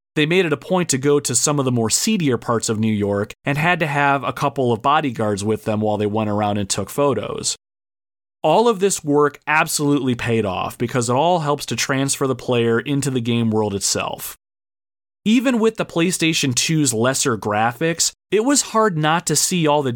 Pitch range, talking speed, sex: 115-155 Hz, 205 wpm, male